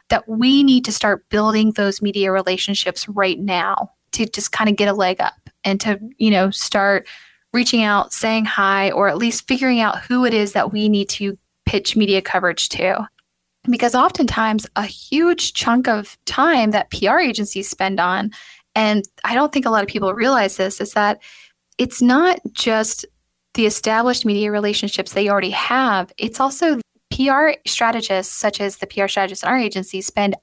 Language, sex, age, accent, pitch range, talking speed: English, female, 10-29, American, 195-230 Hz, 180 wpm